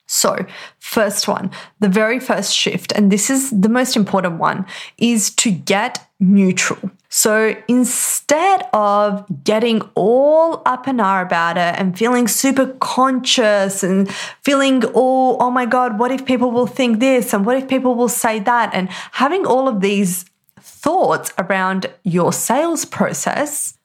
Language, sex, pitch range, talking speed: English, female, 195-250 Hz, 155 wpm